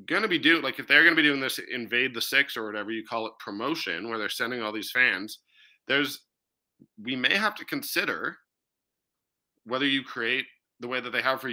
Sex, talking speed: male, 220 wpm